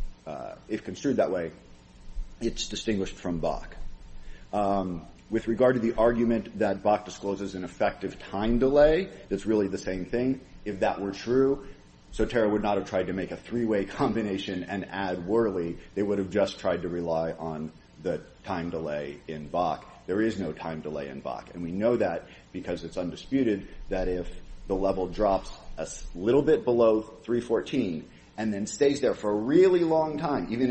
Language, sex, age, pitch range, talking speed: English, male, 40-59, 85-115 Hz, 180 wpm